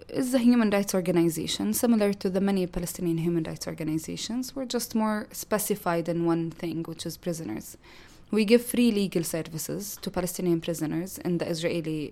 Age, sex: 20-39, female